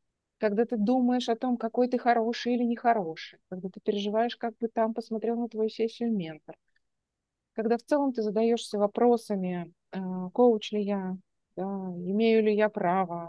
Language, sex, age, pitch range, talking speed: Russian, female, 30-49, 180-235 Hz, 165 wpm